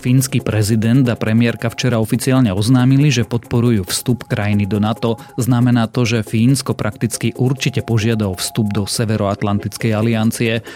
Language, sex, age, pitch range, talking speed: Slovak, male, 30-49, 105-125 Hz, 135 wpm